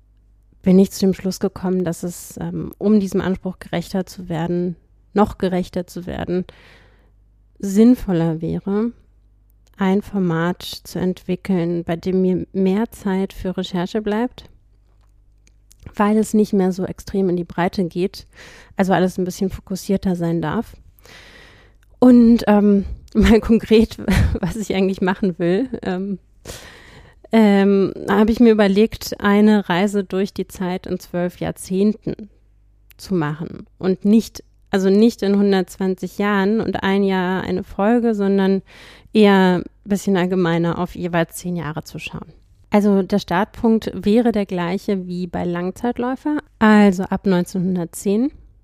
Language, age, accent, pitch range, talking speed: German, 30-49, German, 175-205 Hz, 135 wpm